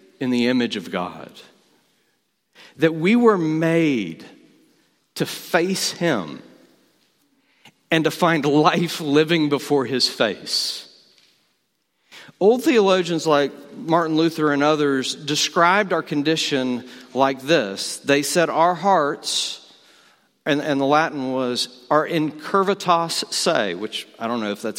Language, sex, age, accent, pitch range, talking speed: English, male, 50-69, American, 145-180 Hz, 120 wpm